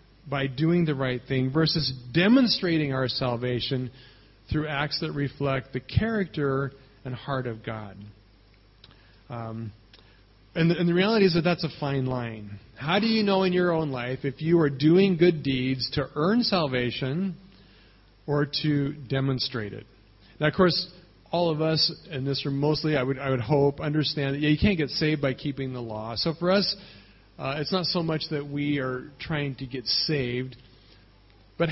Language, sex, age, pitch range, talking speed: English, male, 40-59, 120-165 Hz, 170 wpm